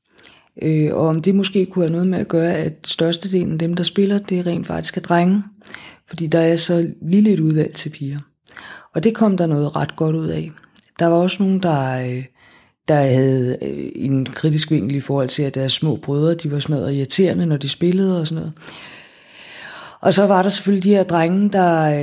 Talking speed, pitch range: 205 wpm, 155-185 Hz